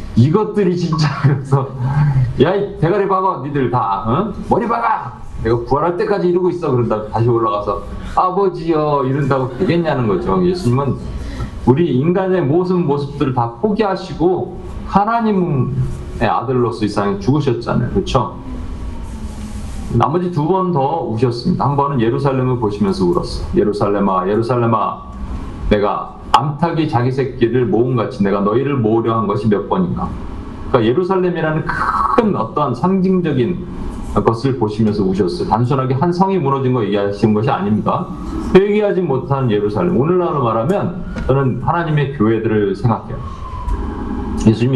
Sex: male